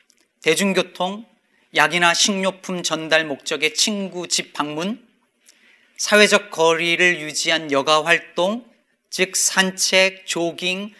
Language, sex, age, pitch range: Korean, male, 40-59, 165-210 Hz